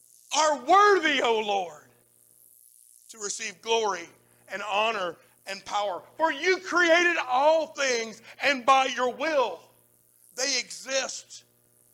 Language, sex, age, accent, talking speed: English, male, 50-69, American, 110 wpm